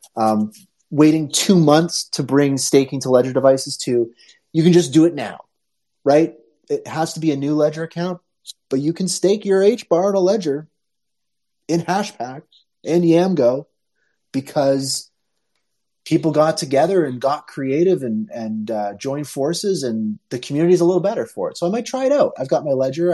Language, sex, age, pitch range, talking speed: English, male, 30-49, 120-160 Hz, 180 wpm